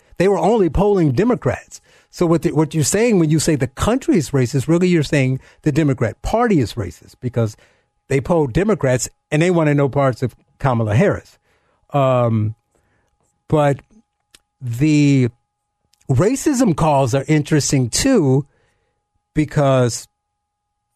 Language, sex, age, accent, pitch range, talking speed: English, male, 50-69, American, 110-160 Hz, 140 wpm